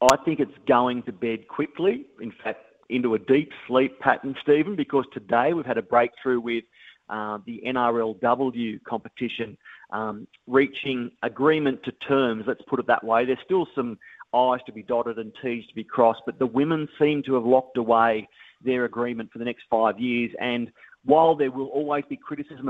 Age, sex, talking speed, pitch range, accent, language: 40-59, male, 185 wpm, 115-135 Hz, Australian, English